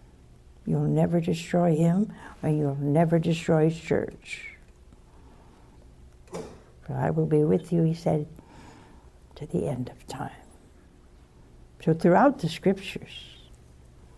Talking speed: 110 wpm